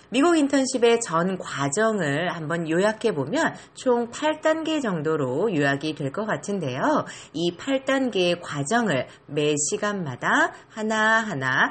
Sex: female